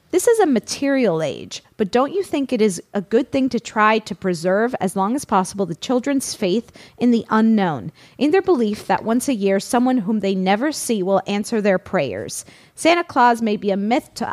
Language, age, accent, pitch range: English, 30-49, American, 200-260 Hz